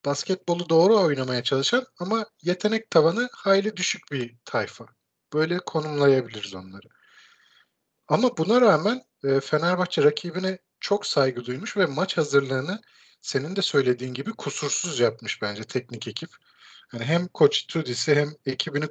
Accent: native